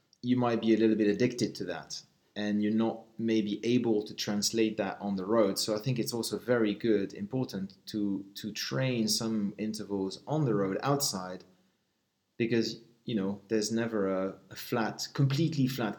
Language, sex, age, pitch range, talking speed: English, male, 30-49, 105-130 Hz, 175 wpm